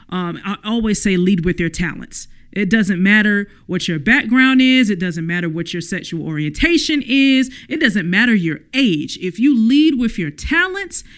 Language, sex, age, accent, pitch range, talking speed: English, male, 40-59, American, 185-275 Hz, 180 wpm